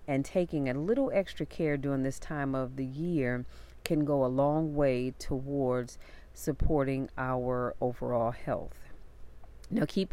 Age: 40-59